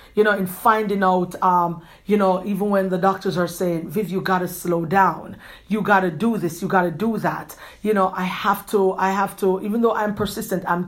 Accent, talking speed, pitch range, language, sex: Nigerian, 235 wpm, 155-190 Hz, English, female